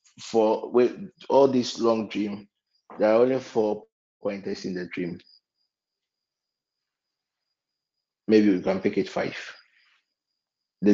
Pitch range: 100-145 Hz